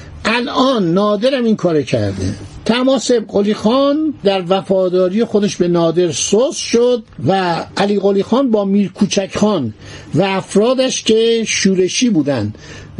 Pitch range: 165-225 Hz